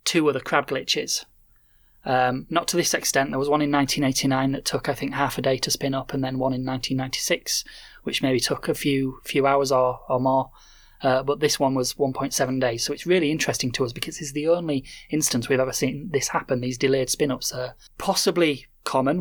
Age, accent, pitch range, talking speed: 20-39, British, 130-150 Hz, 210 wpm